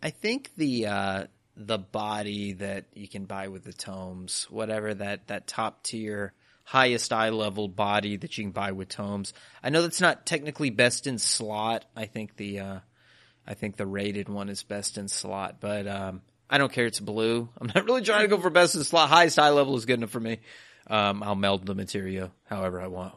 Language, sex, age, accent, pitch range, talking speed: English, male, 30-49, American, 100-125 Hz, 210 wpm